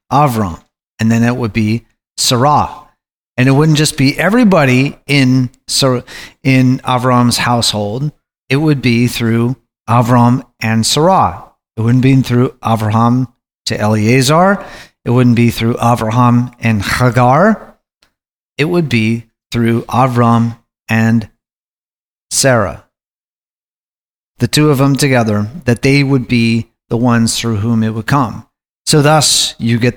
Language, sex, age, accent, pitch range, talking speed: English, male, 30-49, American, 115-135 Hz, 130 wpm